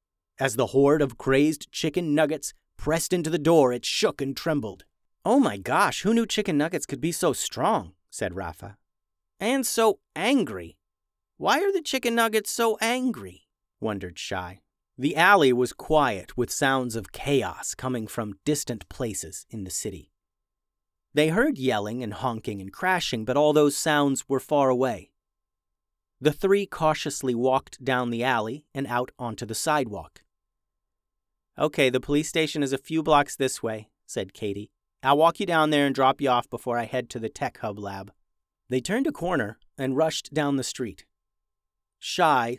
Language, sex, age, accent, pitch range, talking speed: English, male, 30-49, American, 105-150 Hz, 170 wpm